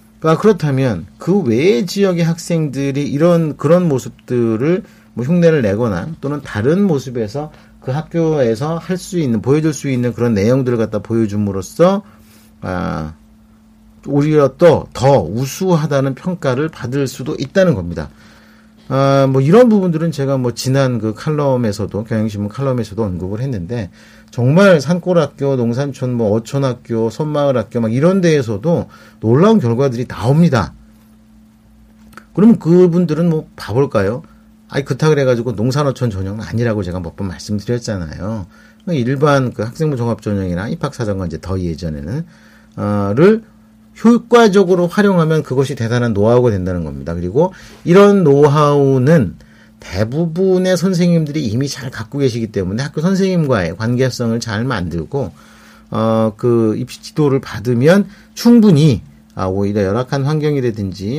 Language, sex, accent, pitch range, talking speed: English, male, Korean, 110-155 Hz, 115 wpm